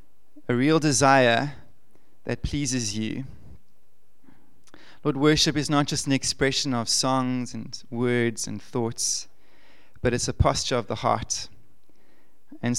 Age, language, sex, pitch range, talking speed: 20-39, English, male, 120-150 Hz, 125 wpm